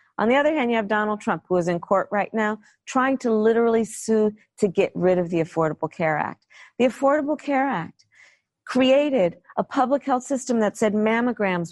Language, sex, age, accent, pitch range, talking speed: English, female, 40-59, American, 205-275 Hz, 195 wpm